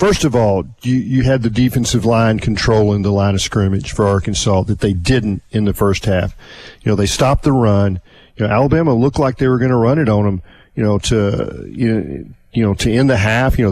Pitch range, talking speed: 105-135 Hz, 230 wpm